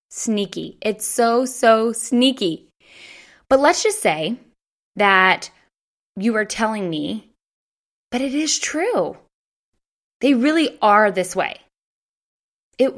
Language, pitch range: English, 190-250 Hz